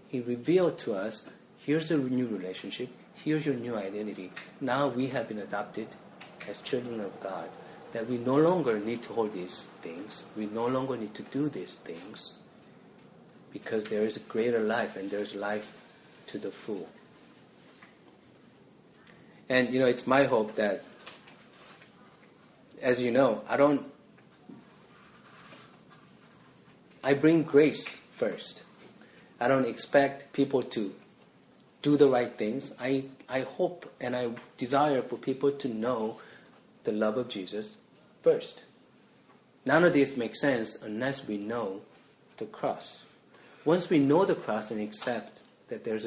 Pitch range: 110-140 Hz